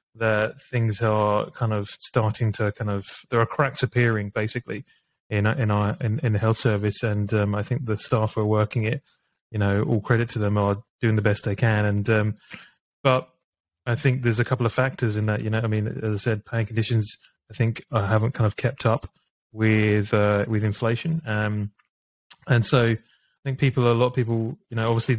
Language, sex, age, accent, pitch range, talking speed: English, male, 20-39, British, 105-125 Hz, 215 wpm